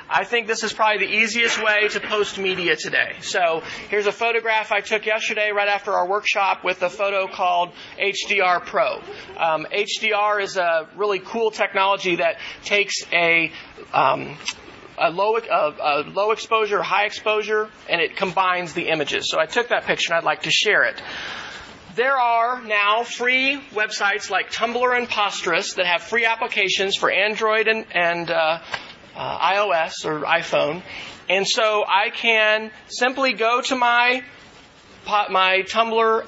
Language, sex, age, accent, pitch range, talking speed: English, male, 40-59, American, 190-230 Hz, 155 wpm